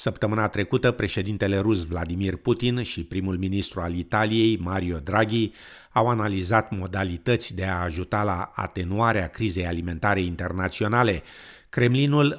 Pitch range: 90-110 Hz